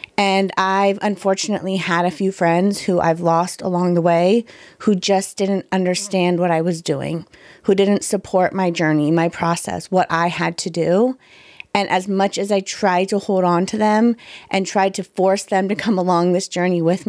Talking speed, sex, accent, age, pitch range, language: 195 wpm, female, American, 30-49, 175-200 Hz, English